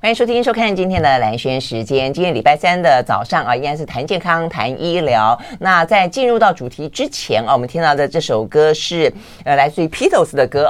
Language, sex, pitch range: Chinese, female, 145-225 Hz